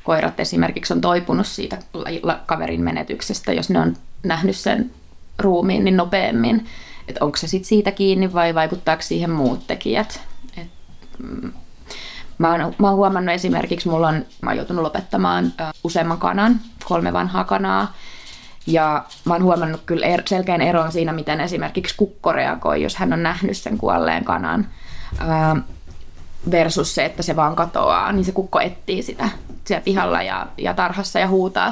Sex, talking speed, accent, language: female, 155 wpm, native, Finnish